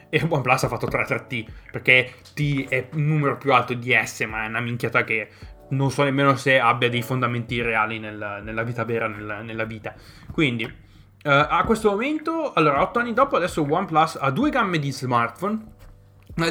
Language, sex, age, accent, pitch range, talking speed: Italian, male, 20-39, native, 120-155 Hz, 195 wpm